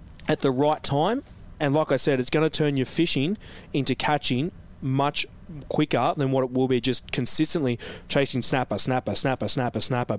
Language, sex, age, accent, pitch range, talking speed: English, male, 20-39, Australian, 125-150 Hz, 185 wpm